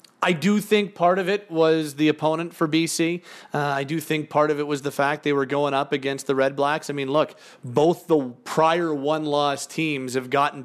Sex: male